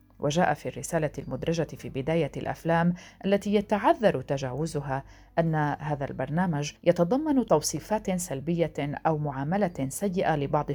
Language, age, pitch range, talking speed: Arabic, 40-59, 135-170 Hz, 110 wpm